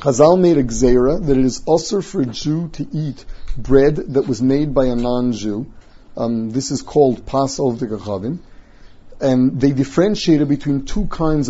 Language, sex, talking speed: English, male, 165 wpm